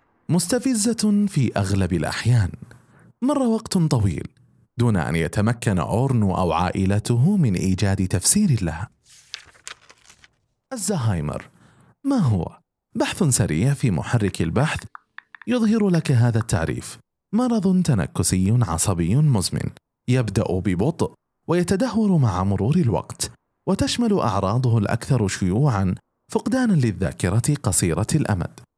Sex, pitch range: male, 100-160 Hz